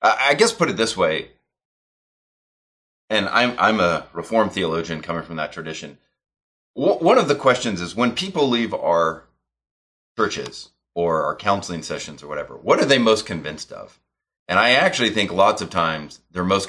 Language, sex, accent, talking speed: English, male, American, 175 wpm